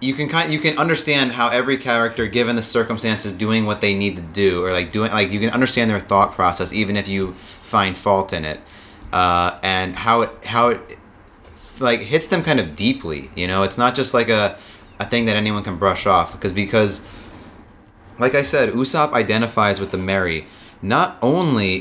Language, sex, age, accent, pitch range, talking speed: English, male, 30-49, American, 95-115 Hz, 200 wpm